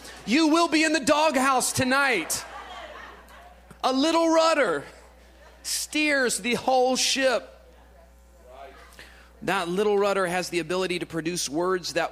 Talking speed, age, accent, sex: 120 wpm, 40-59, American, male